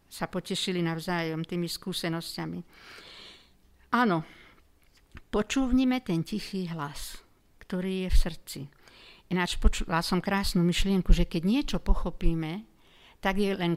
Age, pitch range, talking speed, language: 50-69, 165-210 Hz, 110 wpm, Slovak